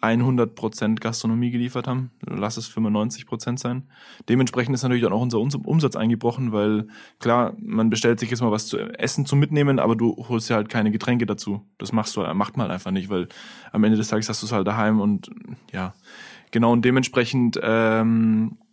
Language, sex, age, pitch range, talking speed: German, male, 20-39, 115-130 Hz, 190 wpm